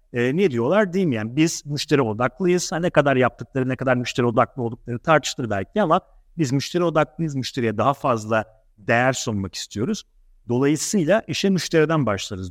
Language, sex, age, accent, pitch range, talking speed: Turkish, male, 50-69, native, 115-165 Hz, 160 wpm